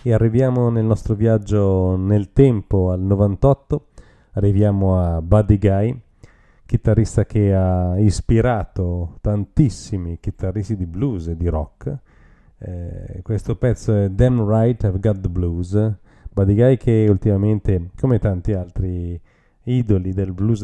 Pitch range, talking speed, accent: 95-115 Hz, 130 wpm, native